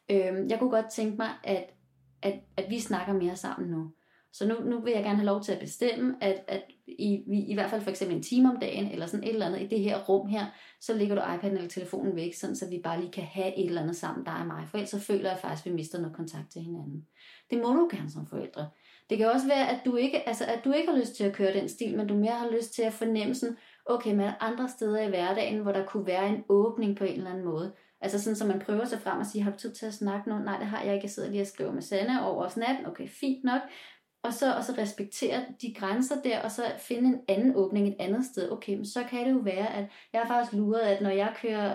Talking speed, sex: 285 wpm, female